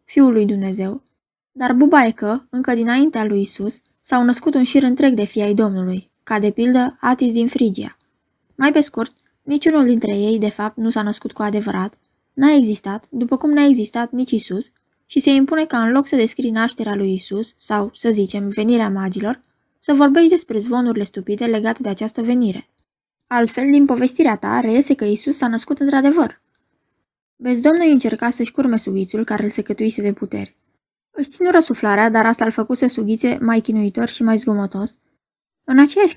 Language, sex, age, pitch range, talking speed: Romanian, female, 20-39, 210-270 Hz, 180 wpm